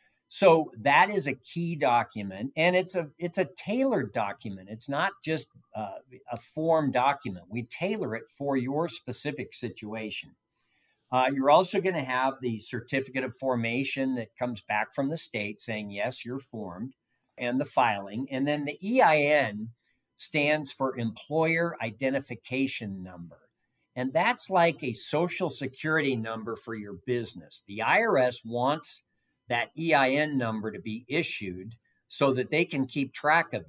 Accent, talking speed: American, 150 wpm